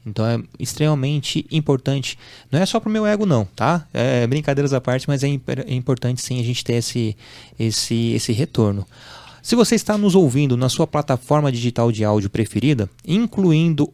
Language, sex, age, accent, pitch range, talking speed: Portuguese, male, 20-39, Brazilian, 120-160 Hz, 175 wpm